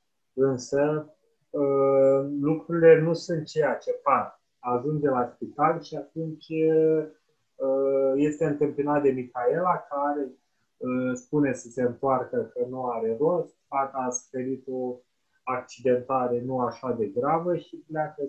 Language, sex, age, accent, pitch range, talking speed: Romanian, male, 30-49, native, 125-155 Hz, 130 wpm